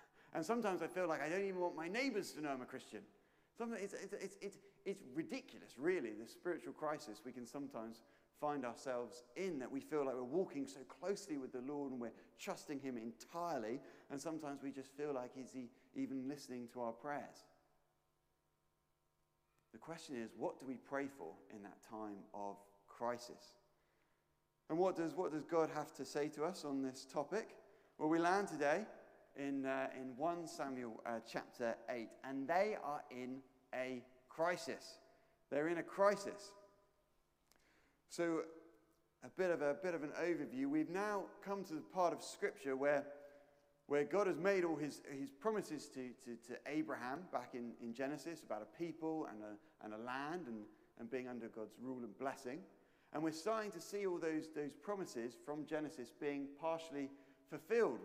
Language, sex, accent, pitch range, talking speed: English, male, British, 130-170 Hz, 180 wpm